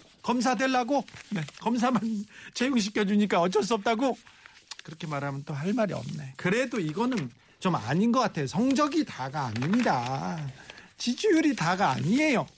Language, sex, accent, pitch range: Korean, male, native, 140-215 Hz